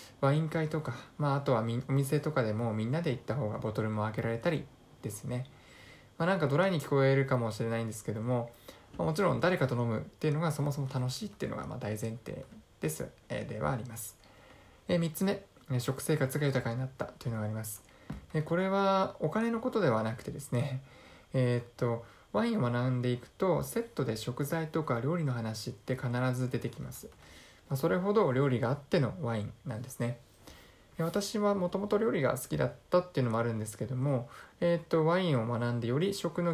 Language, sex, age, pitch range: Japanese, male, 20-39, 115-165 Hz